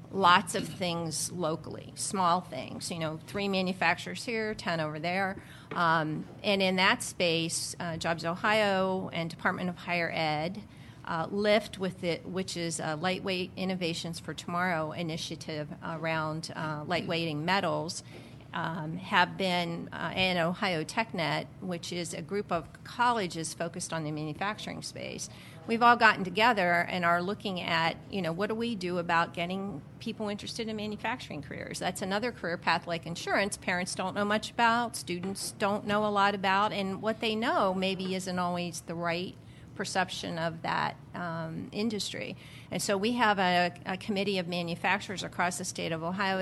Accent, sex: American, female